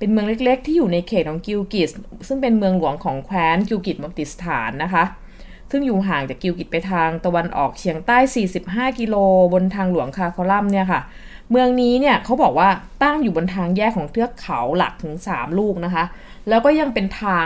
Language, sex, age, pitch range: Thai, female, 20-39, 175-220 Hz